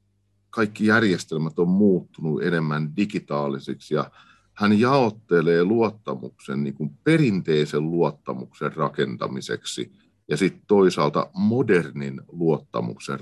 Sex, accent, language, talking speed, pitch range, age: male, native, Finnish, 90 wpm, 70-90 Hz, 50-69